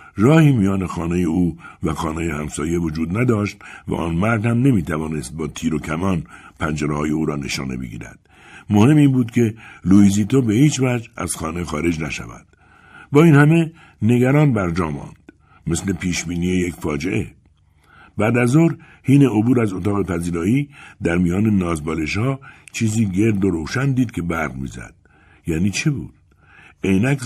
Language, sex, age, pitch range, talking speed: Persian, male, 60-79, 85-130 Hz, 155 wpm